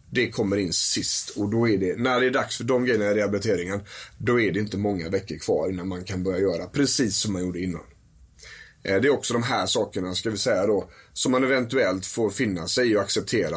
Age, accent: 30-49, native